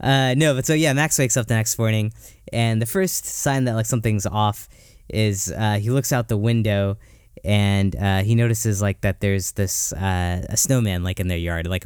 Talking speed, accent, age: 210 wpm, American, 10-29